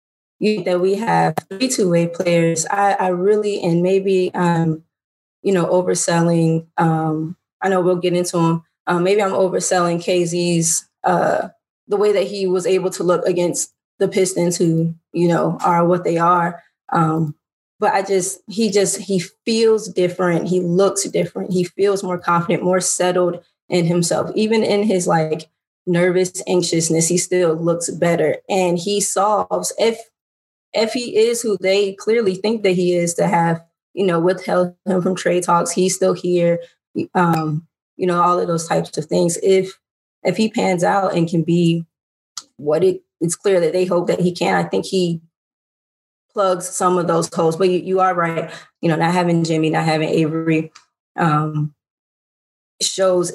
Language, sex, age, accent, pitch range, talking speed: English, female, 20-39, American, 170-190 Hz, 175 wpm